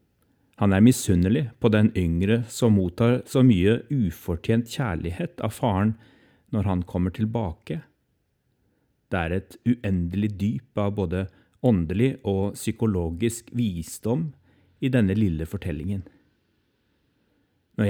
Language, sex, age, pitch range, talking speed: English, male, 30-49, 95-120 Hz, 110 wpm